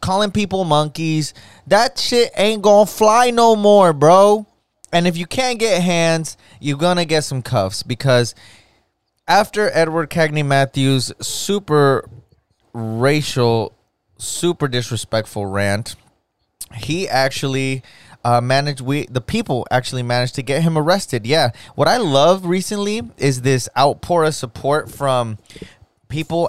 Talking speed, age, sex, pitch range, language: 135 wpm, 20-39, male, 120-160 Hz, English